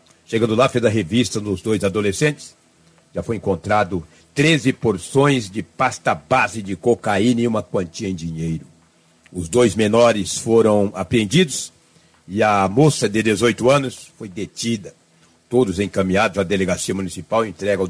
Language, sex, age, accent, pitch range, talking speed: Portuguese, male, 60-79, Brazilian, 85-115 Hz, 150 wpm